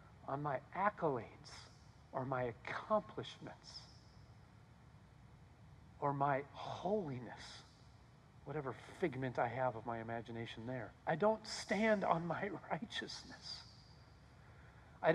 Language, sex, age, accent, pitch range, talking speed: English, male, 50-69, American, 125-175 Hz, 95 wpm